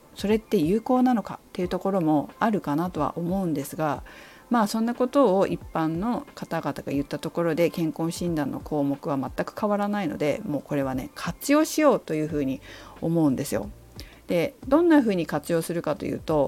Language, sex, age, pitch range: Japanese, female, 40-59, 165-270 Hz